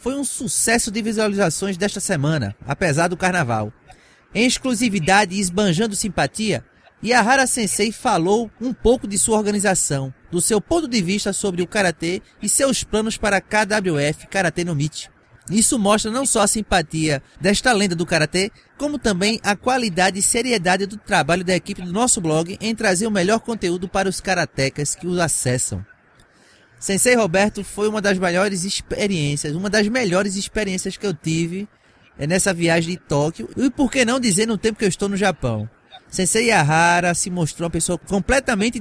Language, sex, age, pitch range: English, male, 20-39, 160-215 Hz